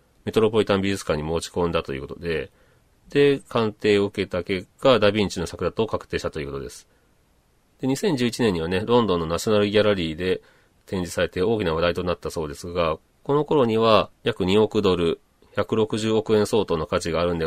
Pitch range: 90-110 Hz